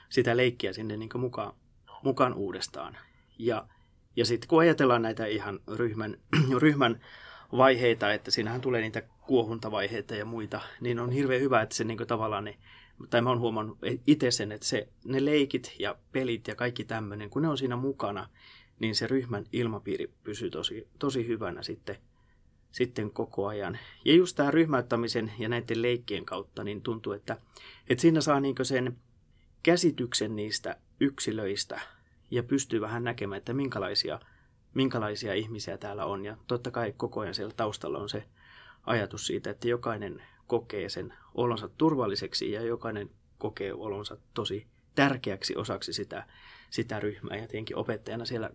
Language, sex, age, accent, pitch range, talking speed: Finnish, male, 30-49, native, 105-125 Hz, 155 wpm